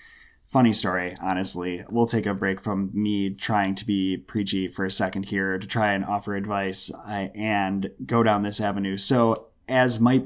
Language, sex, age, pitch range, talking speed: English, male, 20-39, 100-125 Hz, 175 wpm